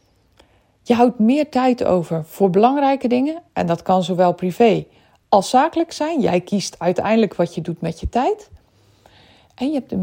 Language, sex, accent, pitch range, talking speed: Dutch, female, Dutch, 175-250 Hz, 175 wpm